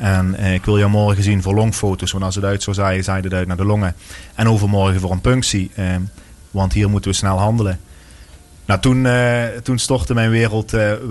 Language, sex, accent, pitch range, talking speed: Dutch, male, Dutch, 95-110 Hz, 215 wpm